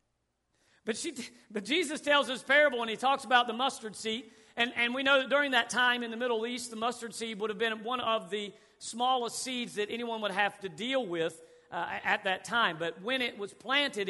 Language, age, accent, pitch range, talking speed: English, 40-59, American, 190-230 Hz, 225 wpm